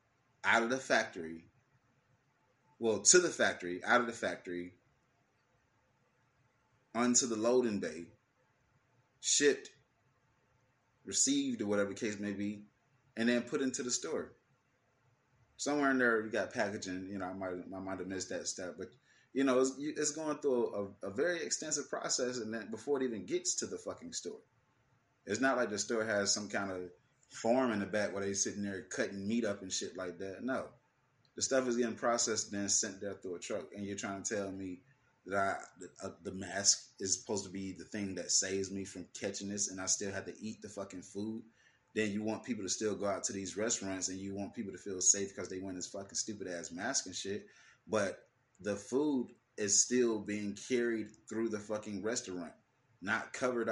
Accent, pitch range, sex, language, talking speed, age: American, 100-125 Hz, male, English, 200 wpm, 30-49